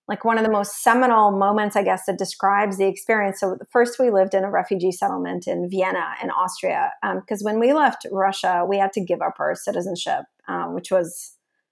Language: English